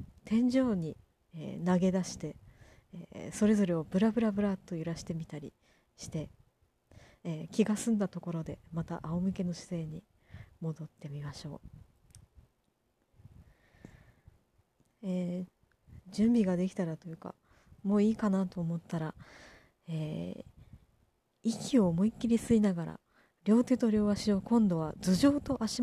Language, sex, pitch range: Japanese, female, 165-210 Hz